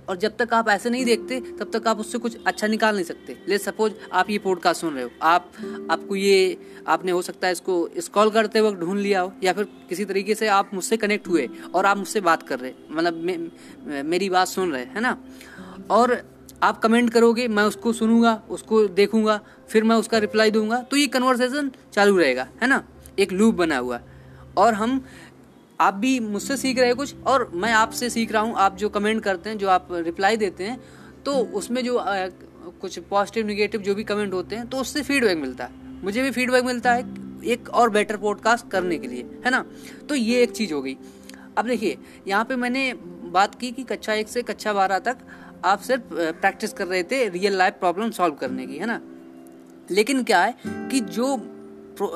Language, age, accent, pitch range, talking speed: Hindi, 20-39, native, 185-240 Hz, 215 wpm